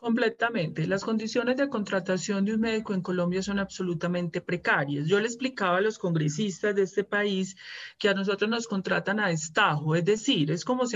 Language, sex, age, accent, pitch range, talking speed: Spanish, male, 30-49, Colombian, 180-220 Hz, 185 wpm